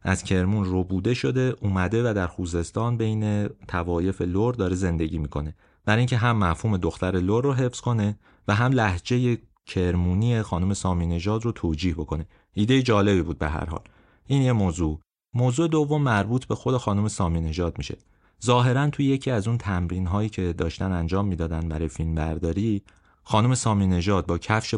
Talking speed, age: 165 wpm, 30-49